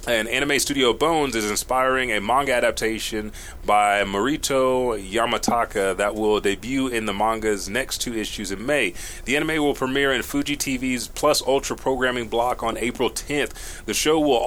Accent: American